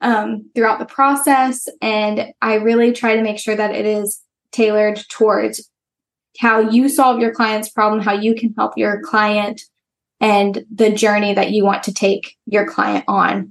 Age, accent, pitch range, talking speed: 10-29, American, 210-245 Hz, 175 wpm